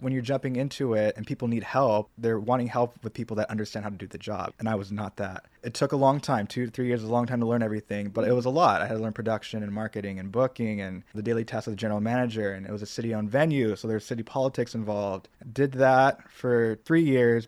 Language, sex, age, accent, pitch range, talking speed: English, male, 20-39, American, 105-120 Hz, 280 wpm